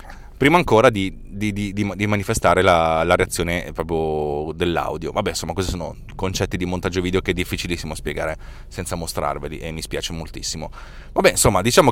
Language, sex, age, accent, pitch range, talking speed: Italian, male, 30-49, native, 90-110 Hz, 160 wpm